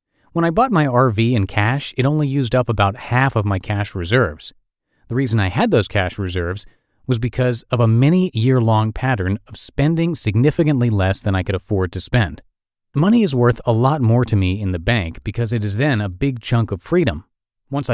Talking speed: 210 wpm